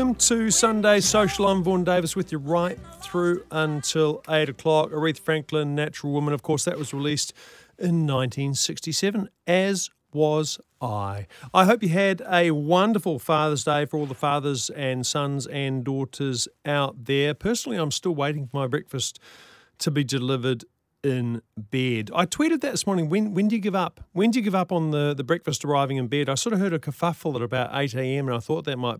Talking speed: 200 wpm